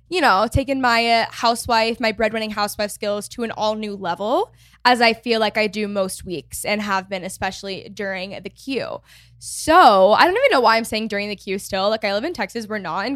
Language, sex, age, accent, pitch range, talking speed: English, female, 10-29, American, 205-250 Hz, 225 wpm